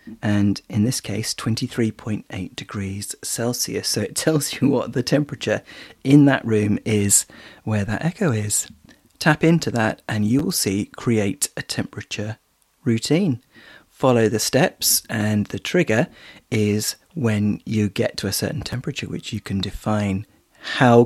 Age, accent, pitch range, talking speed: 30-49, British, 105-125 Hz, 150 wpm